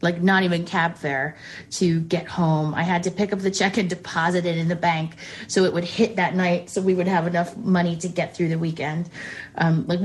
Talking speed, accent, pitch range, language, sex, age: 240 wpm, American, 175-215 Hz, English, female, 30-49